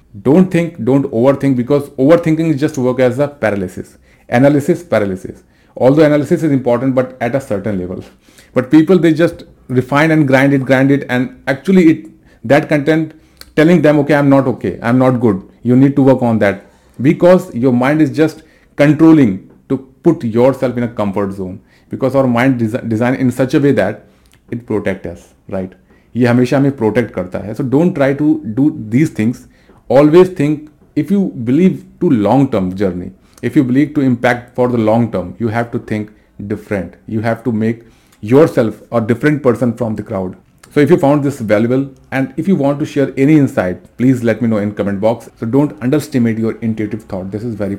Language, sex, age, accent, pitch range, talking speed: Hindi, male, 40-59, native, 105-140 Hz, 195 wpm